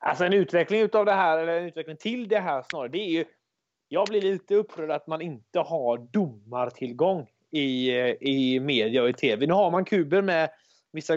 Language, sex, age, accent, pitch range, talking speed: English, male, 30-49, Swedish, 135-185 Hz, 205 wpm